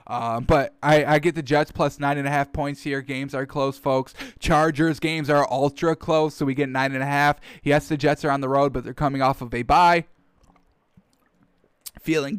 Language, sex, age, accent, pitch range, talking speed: English, male, 10-29, American, 140-165 Hz, 220 wpm